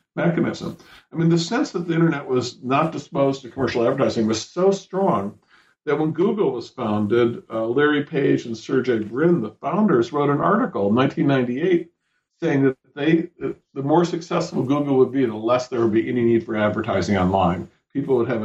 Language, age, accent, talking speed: English, 50-69, American, 190 wpm